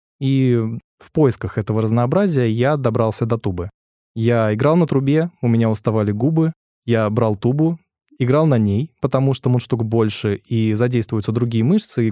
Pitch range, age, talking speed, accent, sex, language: 110-135 Hz, 20-39, 160 wpm, native, male, Russian